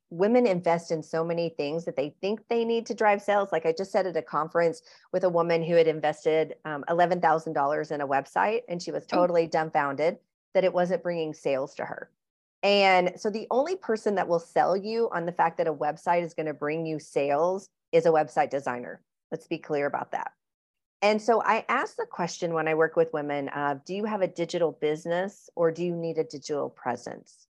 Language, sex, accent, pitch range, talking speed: English, female, American, 160-195 Hz, 215 wpm